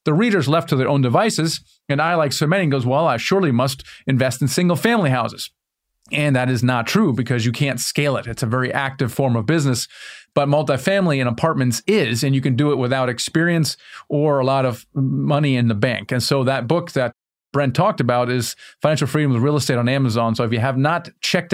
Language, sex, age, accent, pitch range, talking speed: English, male, 30-49, American, 130-155 Hz, 225 wpm